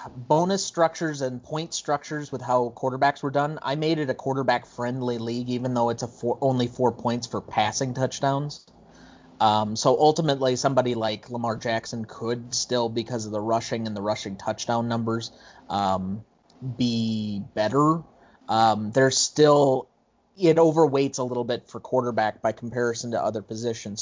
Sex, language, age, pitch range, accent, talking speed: male, English, 30-49, 115-145 Hz, American, 160 wpm